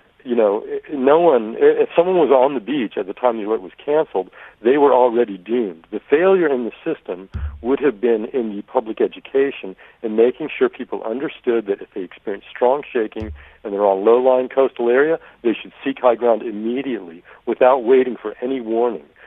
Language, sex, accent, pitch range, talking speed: English, male, American, 110-155 Hz, 190 wpm